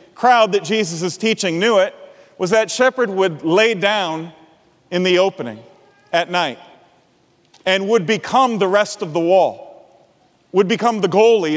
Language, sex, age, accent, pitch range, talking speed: English, male, 40-59, American, 195-235 Hz, 155 wpm